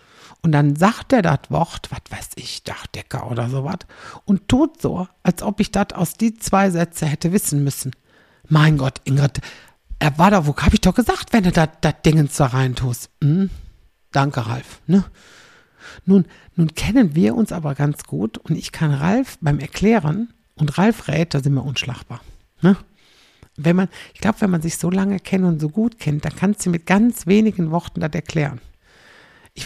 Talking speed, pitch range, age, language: 190 wpm, 145-190 Hz, 60-79, German